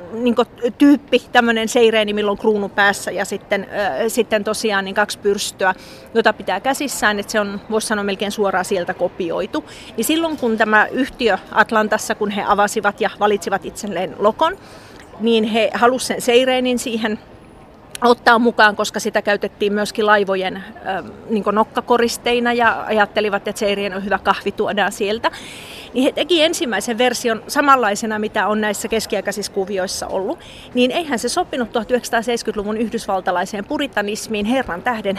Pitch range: 200-240 Hz